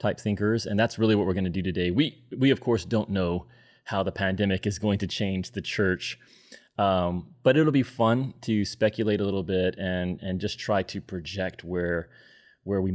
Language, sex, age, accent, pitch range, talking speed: English, male, 30-49, American, 90-105 Hz, 210 wpm